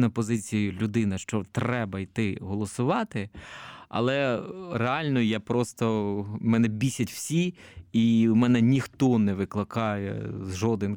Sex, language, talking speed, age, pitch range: male, Ukrainian, 115 wpm, 20-39, 100-120 Hz